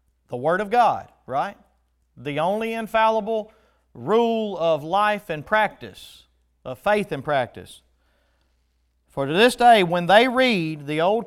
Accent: American